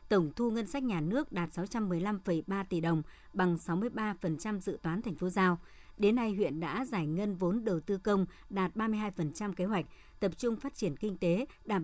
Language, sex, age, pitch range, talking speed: Vietnamese, male, 60-79, 175-220 Hz, 195 wpm